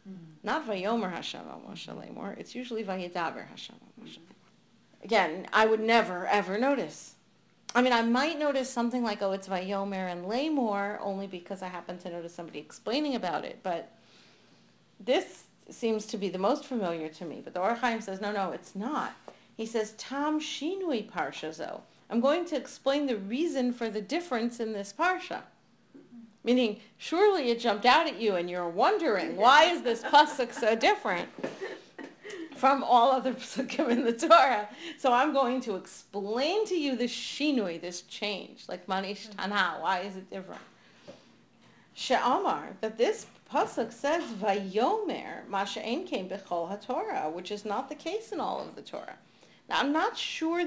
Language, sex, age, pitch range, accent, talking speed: English, female, 40-59, 195-275 Hz, American, 160 wpm